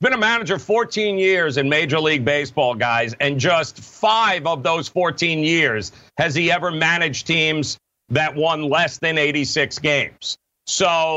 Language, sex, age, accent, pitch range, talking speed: English, male, 50-69, American, 145-190 Hz, 155 wpm